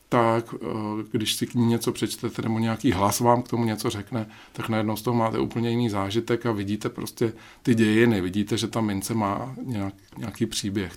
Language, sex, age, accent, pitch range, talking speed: Czech, male, 50-69, native, 105-120 Hz, 190 wpm